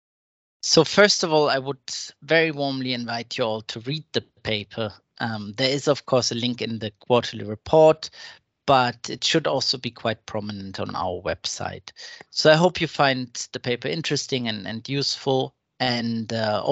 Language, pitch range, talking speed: English, 115-145 Hz, 175 wpm